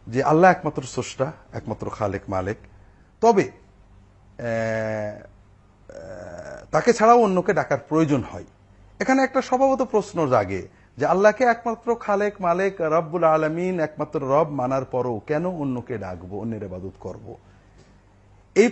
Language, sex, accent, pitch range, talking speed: Bengali, male, native, 105-155 Hz, 120 wpm